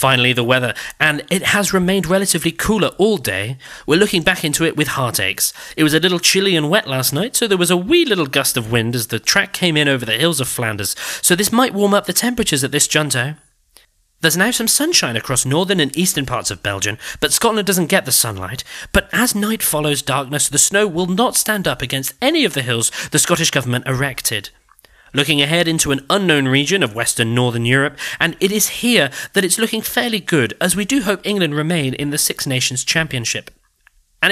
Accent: British